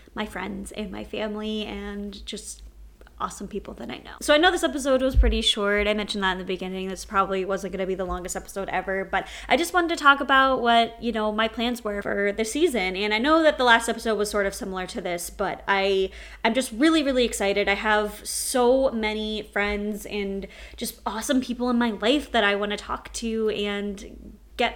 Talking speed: 220 wpm